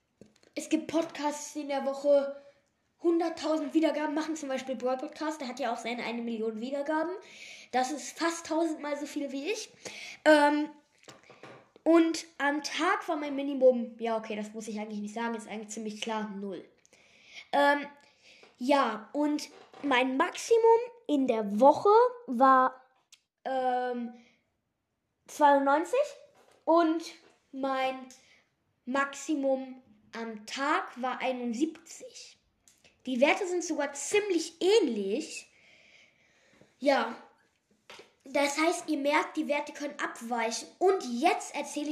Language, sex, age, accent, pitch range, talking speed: German, female, 10-29, German, 240-310 Hz, 125 wpm